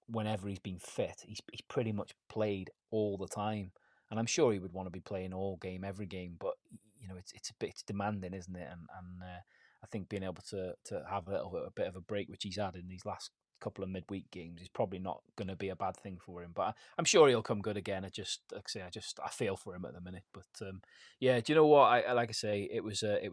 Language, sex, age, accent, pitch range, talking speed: English, male, 30-49, British, 95-110 Hz, 290 wpm